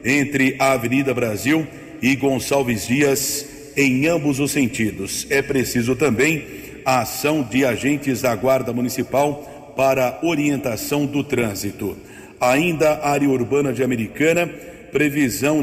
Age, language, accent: 50-69, Portuguese, Brazilian